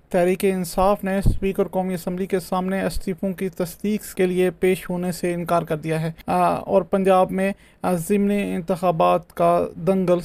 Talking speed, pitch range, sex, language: 160 wpm, 185-200 Hz, male, Urdu